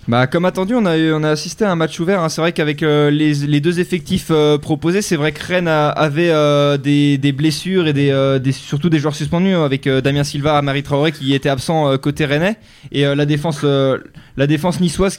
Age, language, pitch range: 20-39, French, 145-170 Hz